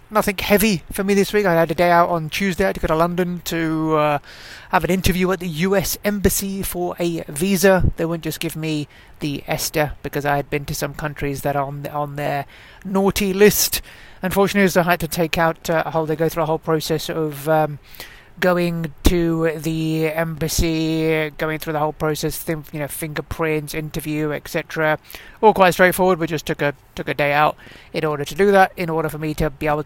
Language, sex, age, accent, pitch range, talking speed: English, male, 30-49, British, 150-180 Hz, 215 wpm